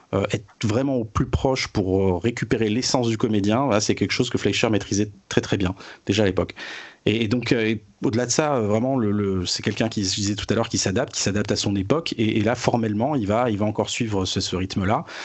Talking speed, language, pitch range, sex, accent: 250 wpm, French, 95-125 Hz, male, French